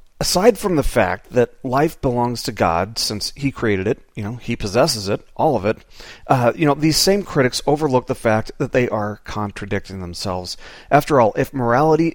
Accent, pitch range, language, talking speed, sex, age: American, 115-145 Hz, English, 195 wpm, male, 40-59